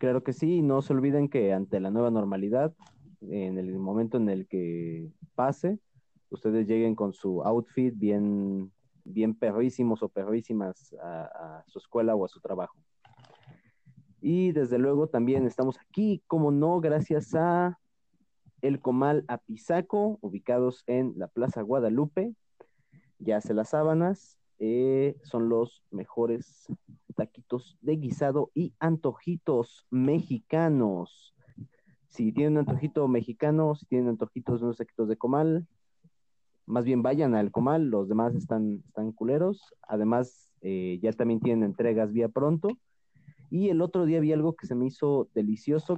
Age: 30-49